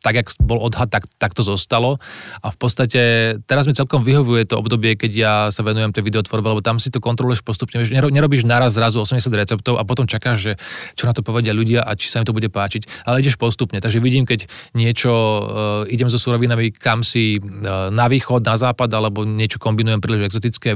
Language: Slovak